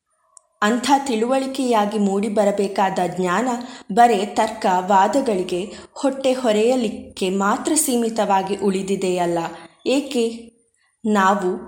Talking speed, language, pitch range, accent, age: 70 wpm, Kannada, 195-255 Hz, native, 20-39